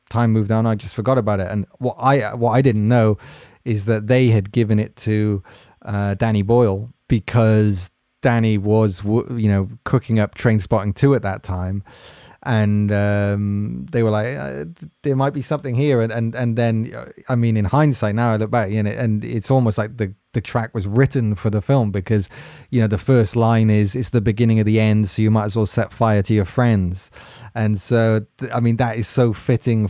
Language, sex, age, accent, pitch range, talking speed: English, male, 30-49, British, 105-120 Hz, 210 wpm